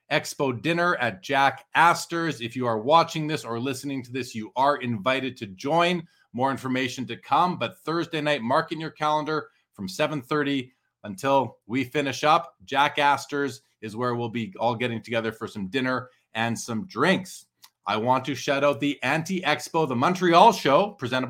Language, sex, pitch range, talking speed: English, male, 125-155 Hz, 180 wpm